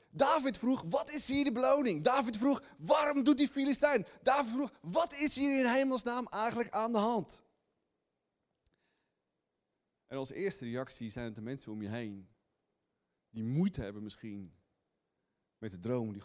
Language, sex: Dutch, male